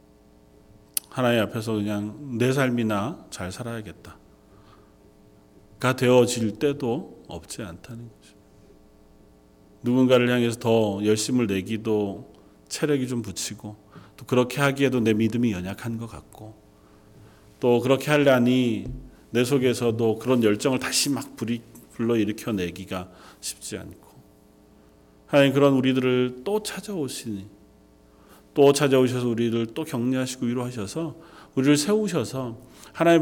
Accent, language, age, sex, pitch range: native, Korean, 40-59, male, 110-160 Hz